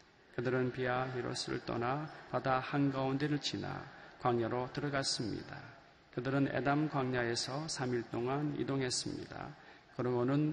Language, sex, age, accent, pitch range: Korean, male, 40-59, native, 120-155 Hz